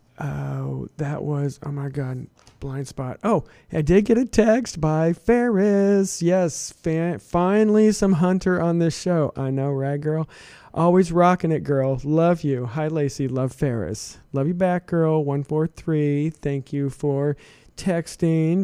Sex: male